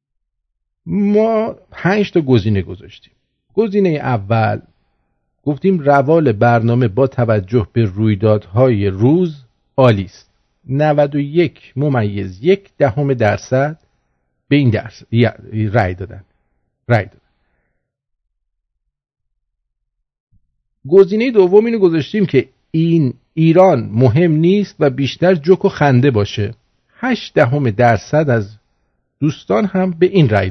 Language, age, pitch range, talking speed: English, 50-69, 110-165 Hz, 105 wpm